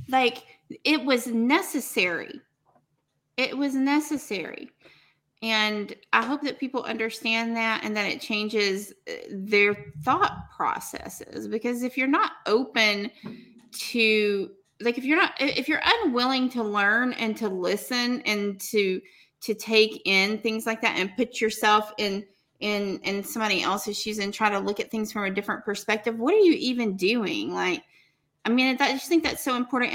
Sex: female